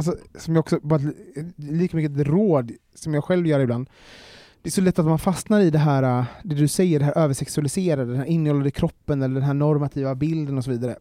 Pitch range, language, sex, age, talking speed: 140-170 Hz, Swedish, male, 30-49, 225 wpm